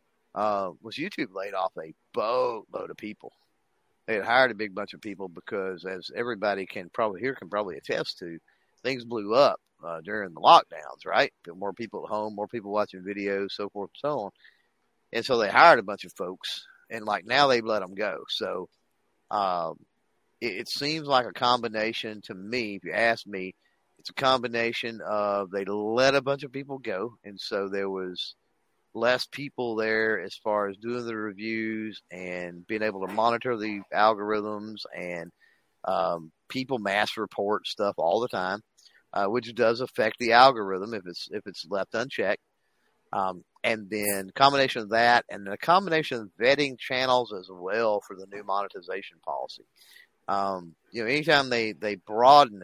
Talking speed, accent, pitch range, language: 180 wpm, American, 100-120 Hz, English